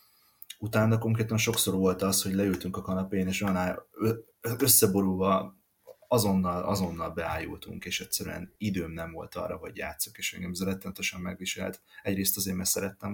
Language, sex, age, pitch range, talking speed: Hungarian, male, 30-49, 90-100 Hz, 140 wpm